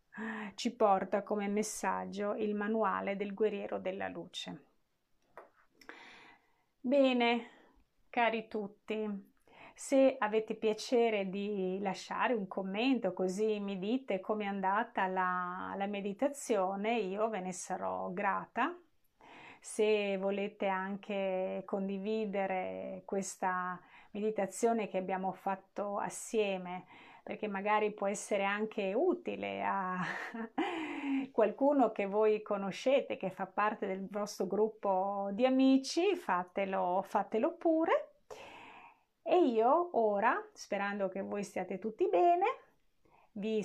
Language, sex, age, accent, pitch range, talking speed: Italian, female, 30-49, native, 195-225 Hz, 105 wpm